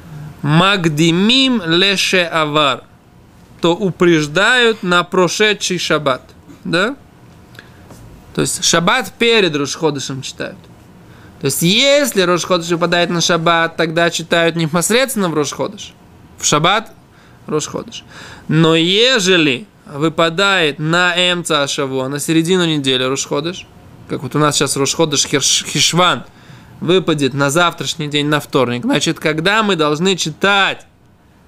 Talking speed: 105 wpm